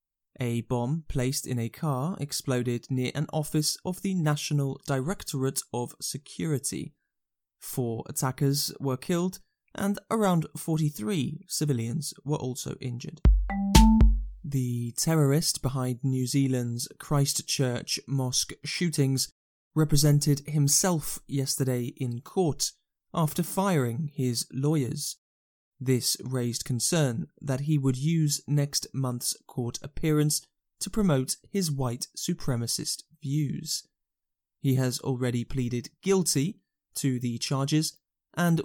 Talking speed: 110 wpm